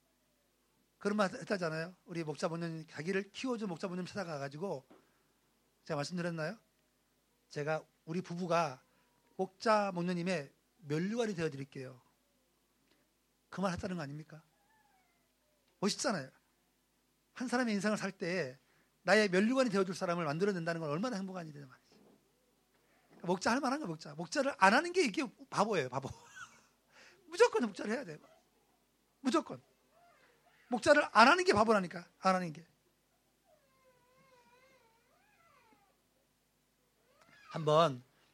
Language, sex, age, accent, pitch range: Korean, male, 40-59, native, 165-245 Hz